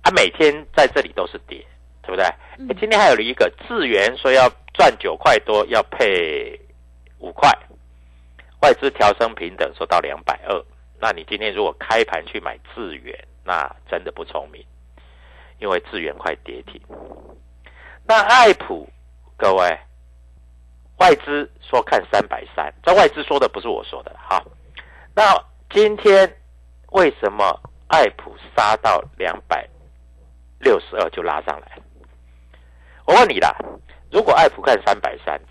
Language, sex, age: Chinese, male, 50-69